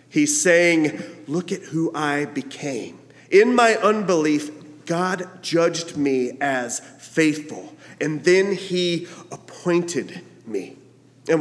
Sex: male